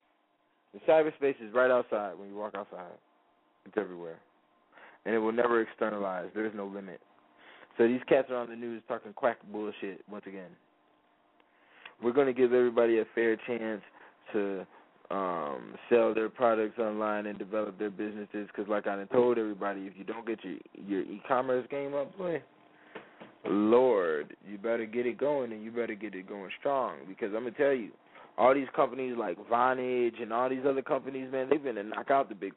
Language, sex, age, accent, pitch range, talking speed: English, male, 20-39, American, 105-135 Hz, 190 wpm